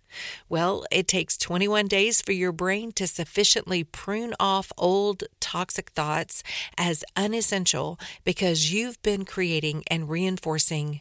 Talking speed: 125 wpm